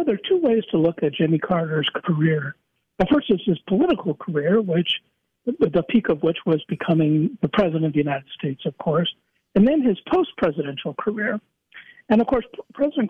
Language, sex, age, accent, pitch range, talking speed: English, male, 60-79, American, 165-215 Hz, 185 wpm